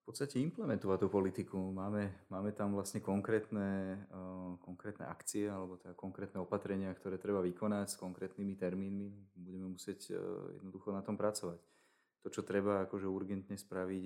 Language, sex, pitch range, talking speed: Slovak, male, 90-100 Hz, 140 wpm